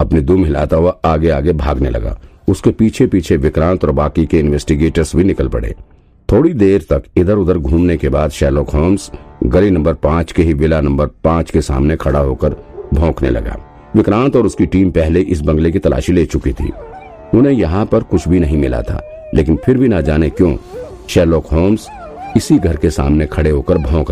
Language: Hindi